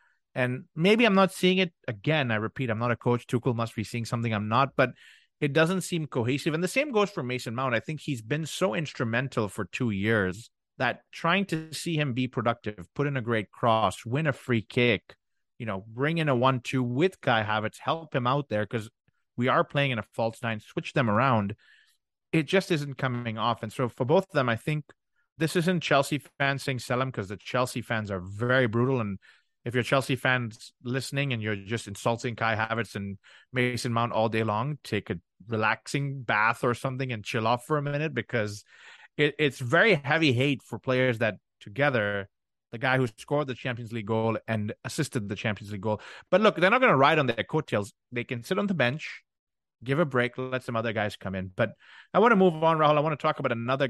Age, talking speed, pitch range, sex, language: 30-49, 220 wpm, 115-145 Hz, male, English